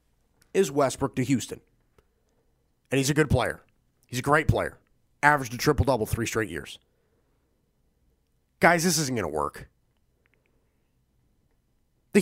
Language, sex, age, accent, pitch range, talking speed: English, male, 30-49, American, 115-155 Hz, 135 wpm